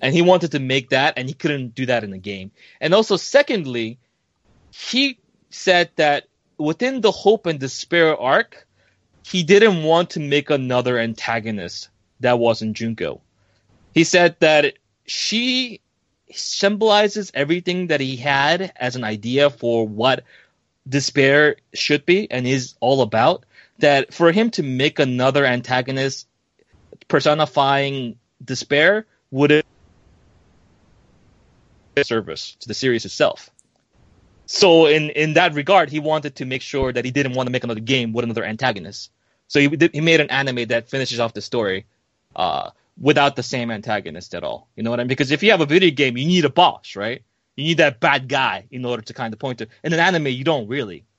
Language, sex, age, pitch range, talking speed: English, male, 30-49, 115-155 Hz, 175 wpm